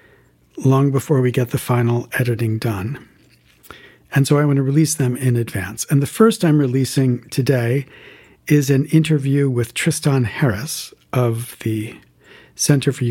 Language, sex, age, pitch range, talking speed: English, male, 50-69, 120-145 Hz, 150 wpm